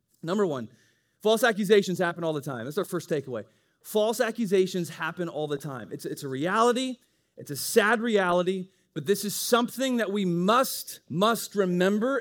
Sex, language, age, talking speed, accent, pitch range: male, English, 30-49, 170 wpm, American, 115-185 Hz